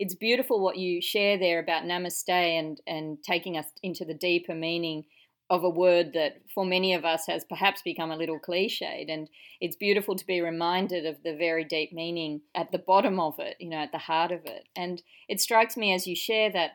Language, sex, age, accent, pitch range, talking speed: English, female, 40-59, Australian, 160-185 Hz, 220 wpm